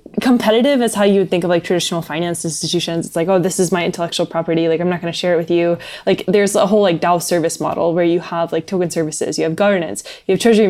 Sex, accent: female, American